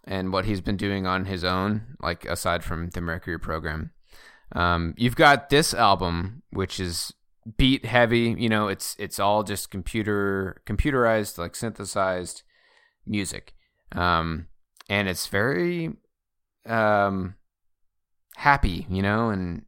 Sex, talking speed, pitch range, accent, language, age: male, 130 wpm, 90-115 Hz, American, English, 20-39